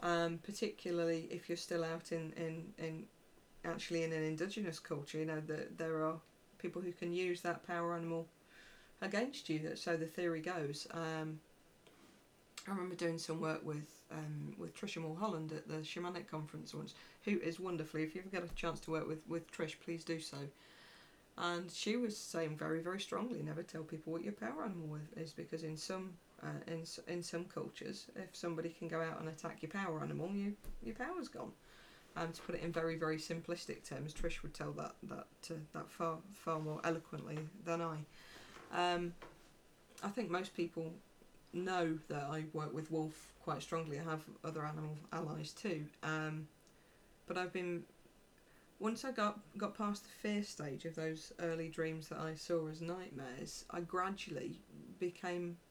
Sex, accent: female, British